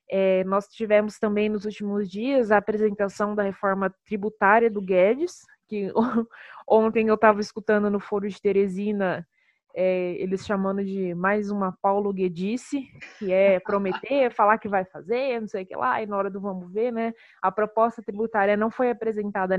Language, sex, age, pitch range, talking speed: Portuguese, female, 20-39, 195-235 Hz, 165 wpm